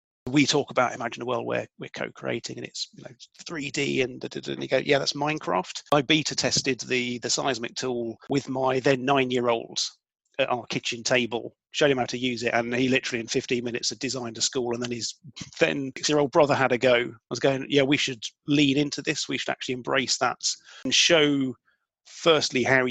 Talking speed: 215 wpm